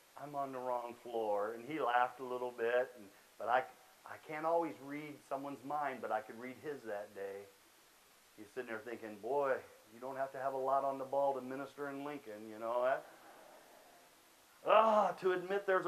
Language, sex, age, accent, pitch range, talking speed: English, male, 40-59, American, 120-150 Hz, 200 wpm